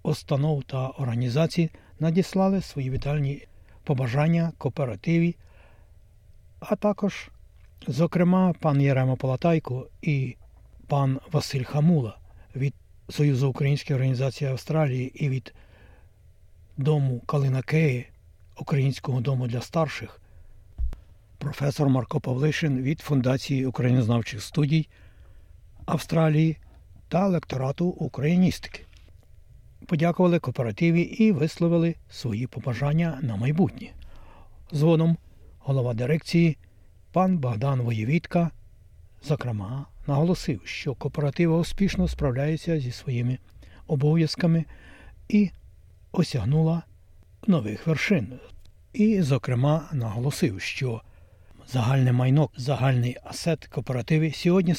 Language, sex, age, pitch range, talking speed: Ukrainian, male, 60-79, 105-160 Hz, 85 wpm